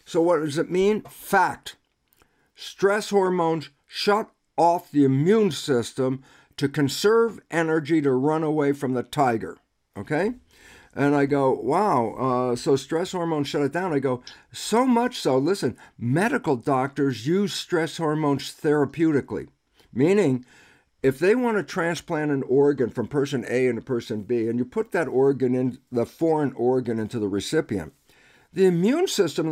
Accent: American